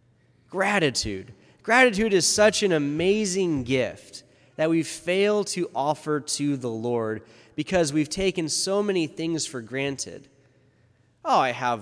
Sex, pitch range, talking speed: male, 135-200 Hz, 130 wpm